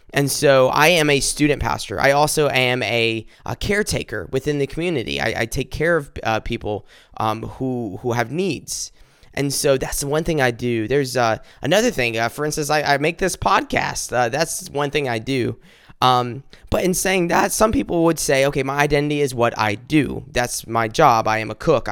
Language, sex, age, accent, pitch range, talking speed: English, male, 20-39, American, 115-145 Hz, 210 wpm